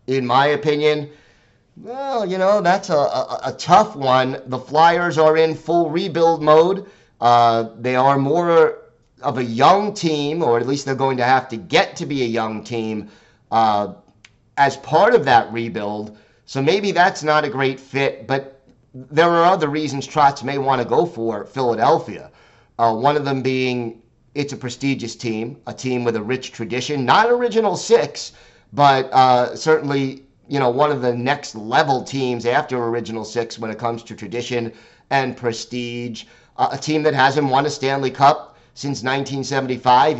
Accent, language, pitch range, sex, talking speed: American, English, 120-150 Hz, male, 170 wpm